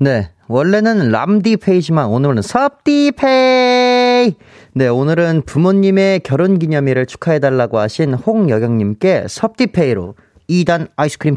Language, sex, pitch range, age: Korean, male, 110-180 Hz, 30-49